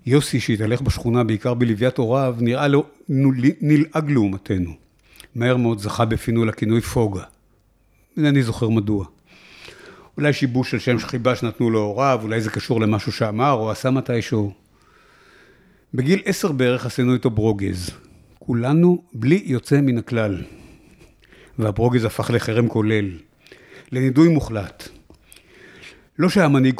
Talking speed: 120 wpm